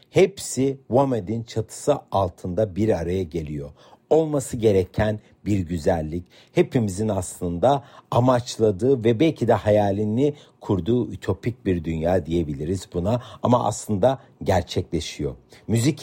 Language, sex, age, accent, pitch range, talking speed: Turkish, male, 60-79, native, 95-135 Hz, 105 wpm